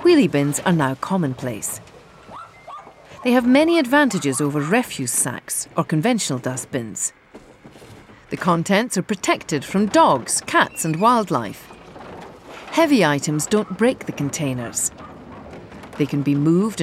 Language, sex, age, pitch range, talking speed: English, female, 40-59, 145-210 Hz, 120 wpm